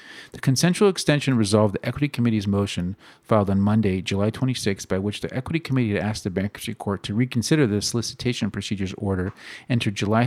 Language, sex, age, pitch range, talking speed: English, male, 40-59, 100-125 Hz, 180 wpm